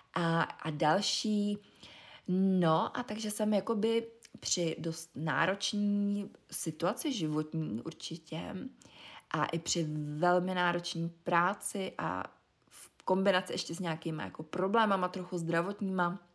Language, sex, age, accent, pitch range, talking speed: Czech, female, 20-39, native, 165-200 Hz, 110 wpm